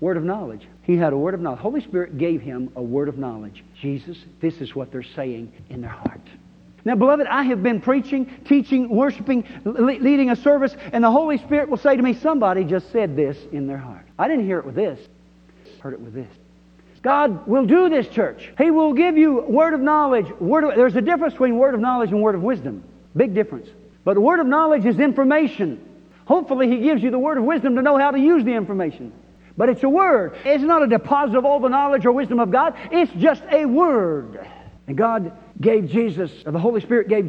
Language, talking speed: English, 225 wpm